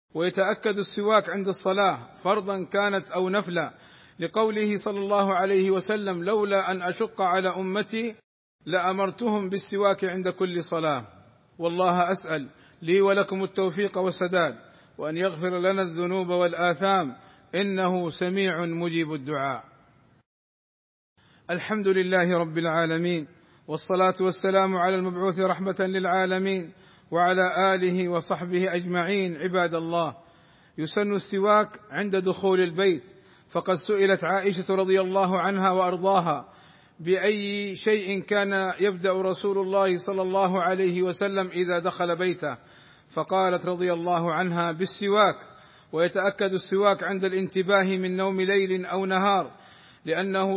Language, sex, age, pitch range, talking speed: Arabic, male, 50-69, 175-195 Hz, 110 wpm